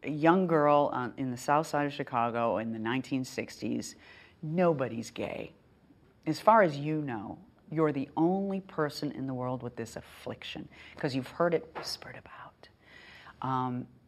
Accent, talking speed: American, 160 wpm